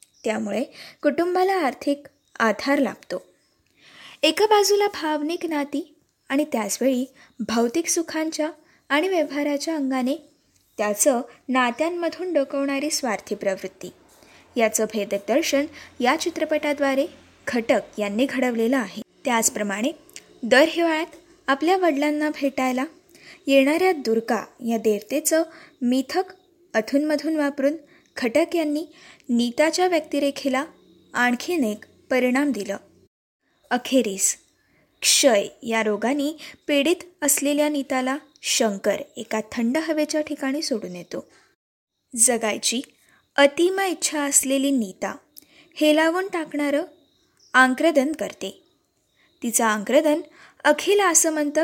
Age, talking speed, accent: 20-39, 90 wpm, native